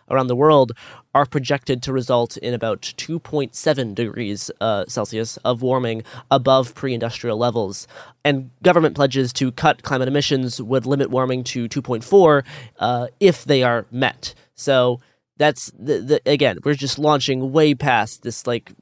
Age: 20-39